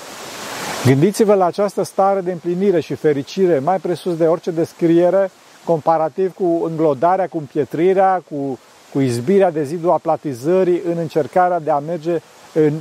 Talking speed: 140 wpm